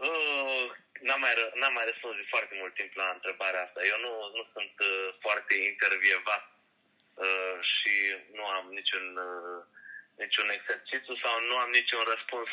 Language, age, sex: Romanian, 20-39, male